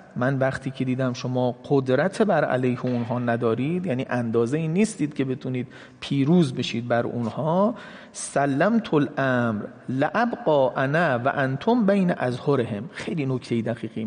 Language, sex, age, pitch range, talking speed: Persian, male, 40-59, 130-200 Hz, 135 wpm